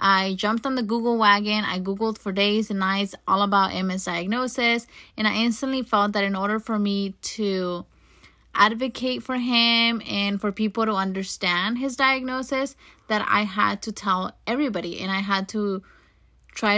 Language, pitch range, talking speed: English, 190-220 Hz, 170 wpm